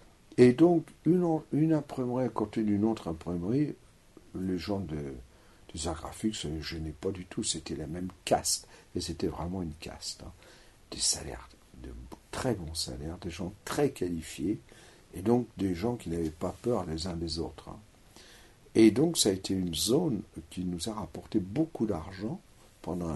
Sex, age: male, 60-79